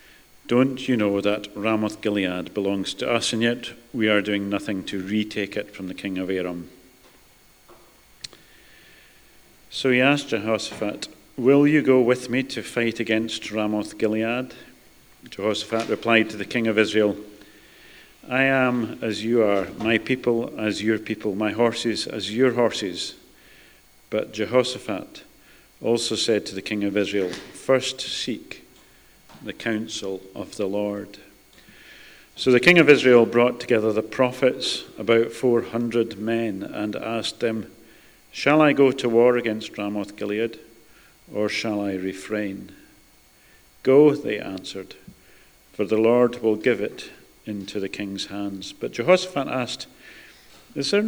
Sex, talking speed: male, 140 wpm